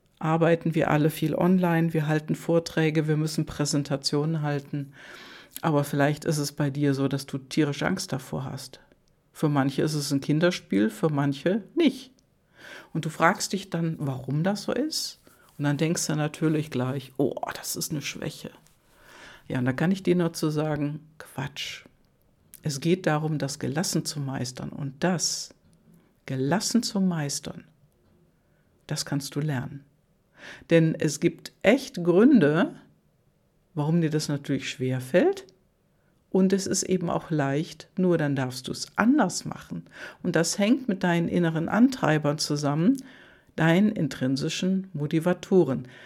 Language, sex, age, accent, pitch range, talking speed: German, female, 60-79, German, 140-175 Hz, 150 wpm